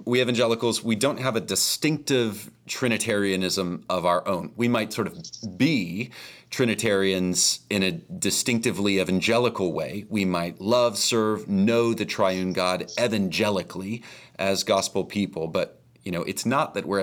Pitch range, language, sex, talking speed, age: 90-115 Hz, English, male, 145 wpm, 30-49